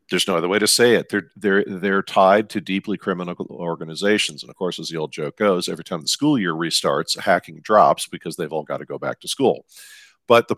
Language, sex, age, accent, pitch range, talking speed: English, male, 50-69, American, 85-105 Hz, 240 wpm